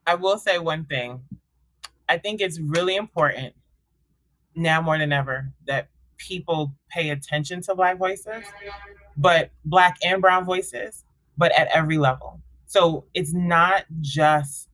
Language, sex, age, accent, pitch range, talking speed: English, male, 20-39, American, 140-165 Hz, 140 wpm